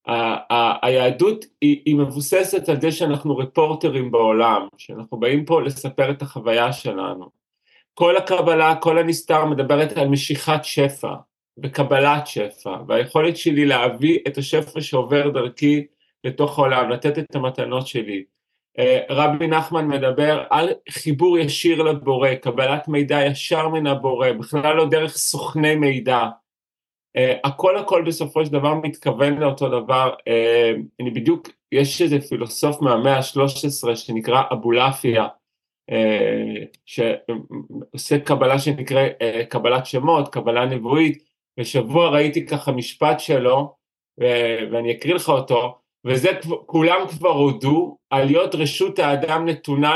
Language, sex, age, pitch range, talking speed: Hebrew, male, 30-49, 130-155 Hz, 125 wpm